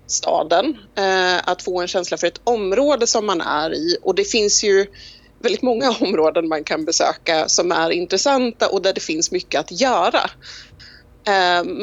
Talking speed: 170 wpm